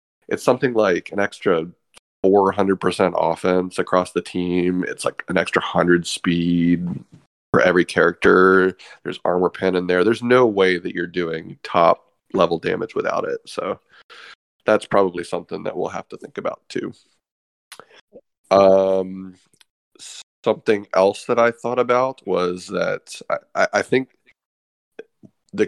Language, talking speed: English, 145 wpm